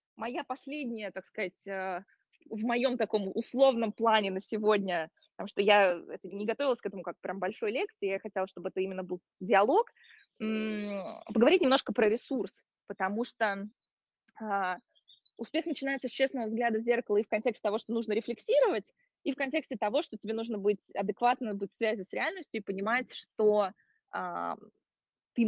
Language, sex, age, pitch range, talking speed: Russian, female, 20-39, 205-265 Hz, 155 wpm